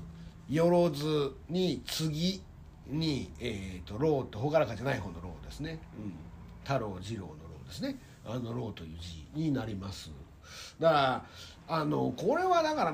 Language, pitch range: Japanese, 110-175 Hz